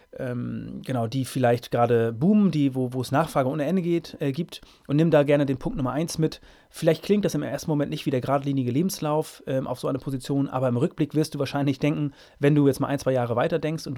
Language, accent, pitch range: German, German, 130-155 Hz